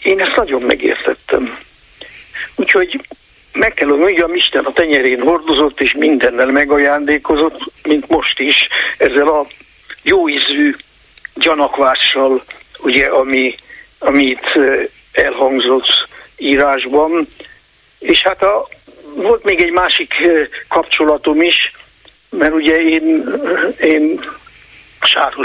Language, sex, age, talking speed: Hungarian, male, 60-79, 100 wpm